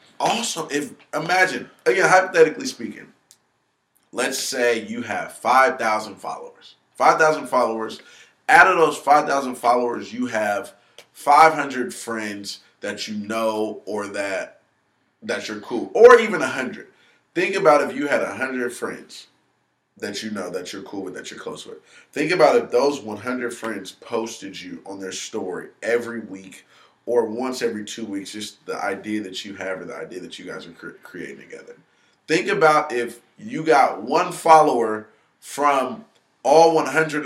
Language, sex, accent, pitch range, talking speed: English, male, American, 115-160 Hz, 155 wpm